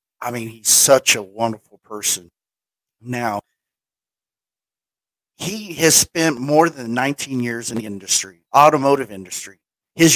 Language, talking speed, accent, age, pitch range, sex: English, 125 wpm, American, 50-69, 125-165 Hz, male